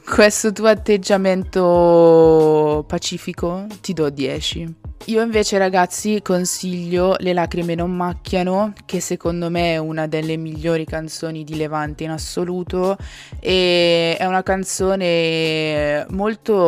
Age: 20-39